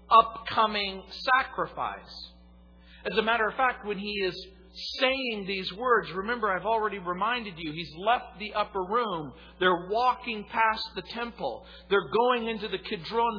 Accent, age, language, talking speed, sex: American, 50-69, English, 150 wpm, male